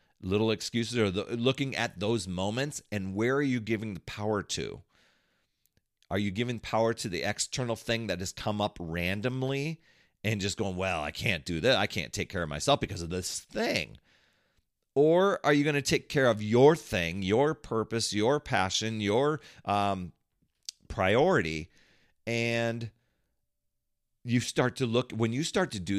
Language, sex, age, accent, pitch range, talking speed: English, male, 40-59, American, 90-120 Hz, 170 wpm